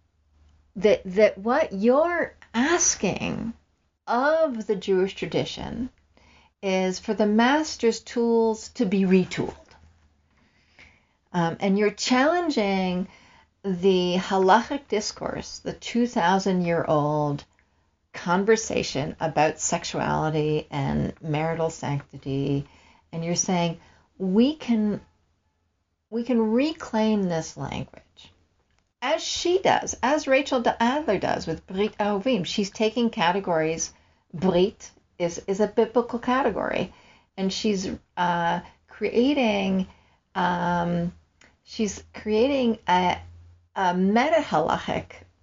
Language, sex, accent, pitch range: English, female, American, 160-230 Hz